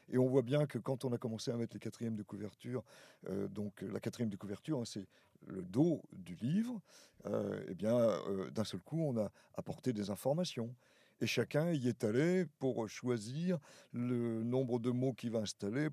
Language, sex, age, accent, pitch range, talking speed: French, male, 50-69, French, 105-140 Hz, 200 wpm